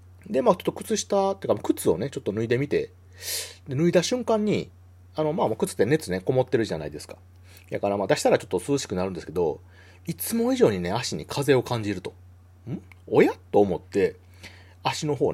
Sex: male